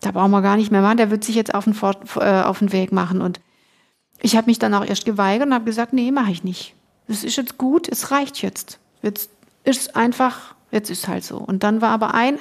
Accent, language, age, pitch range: German, German, 50-69, 210-255 Hz